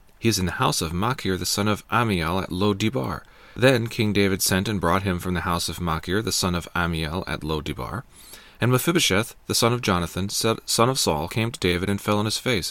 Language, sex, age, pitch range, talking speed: English, male, 40-59, 95-115 Hz, 225 wpm